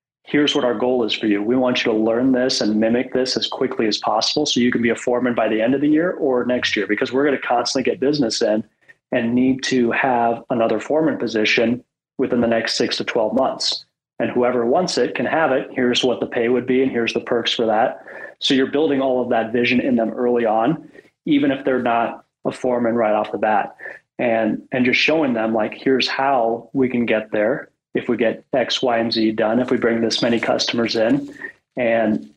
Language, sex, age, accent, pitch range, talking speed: English, male, 30-49, American, 115-130 Hz, 230 wpm